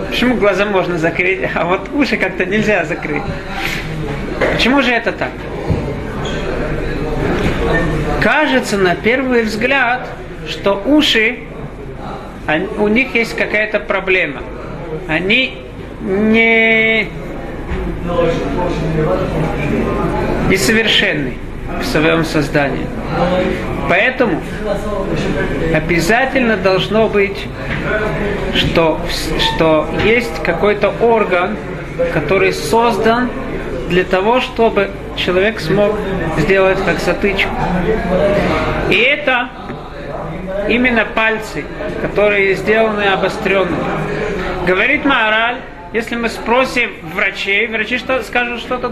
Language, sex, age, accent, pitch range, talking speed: Russian, male, 40-59, native, 185-230 Hz, 80 wpm